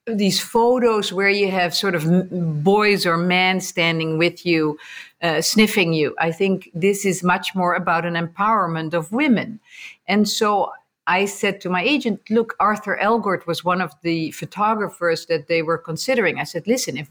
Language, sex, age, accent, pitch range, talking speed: English, female, 50-69, Dutch, 165-210 Hz, 175 wpm